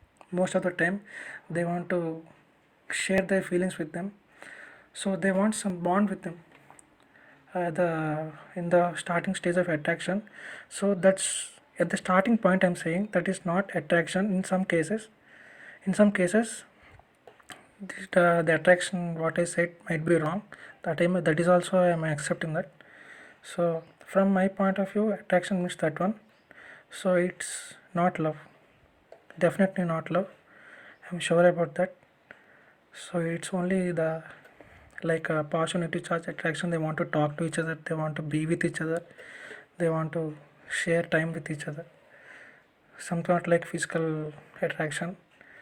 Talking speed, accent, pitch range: 160 wpm, Indian, 165-185 Hz